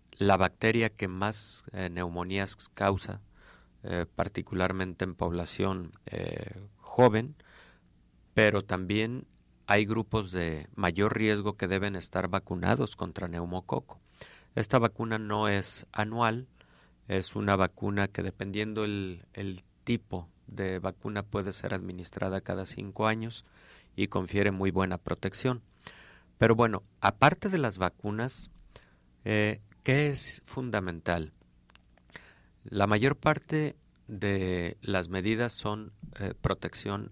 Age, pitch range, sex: 50-69, 90-105 Hz, male